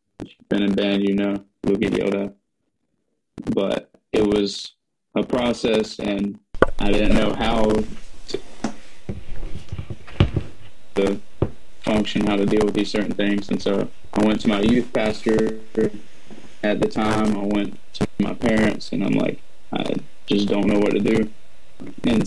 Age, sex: 20-39, male